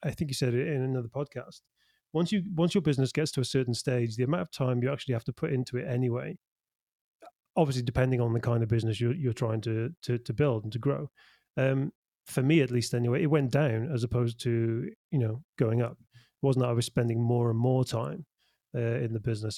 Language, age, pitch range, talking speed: English, 30-49, 120-135 Hz, 235 wpm